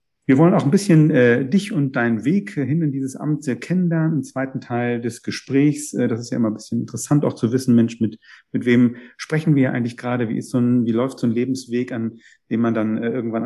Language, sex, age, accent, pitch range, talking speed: German, male, 40-59, German, 115-145 Hz, 240 wpm